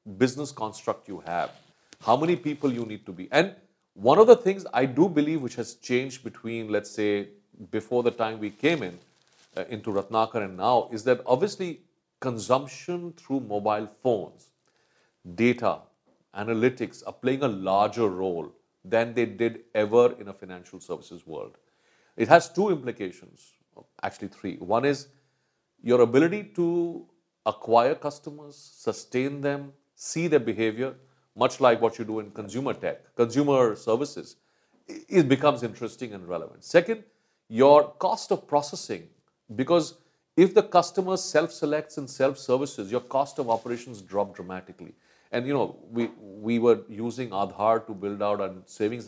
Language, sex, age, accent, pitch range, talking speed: English, male, 40-59, Indian, 110-150 Hz, 150 wpm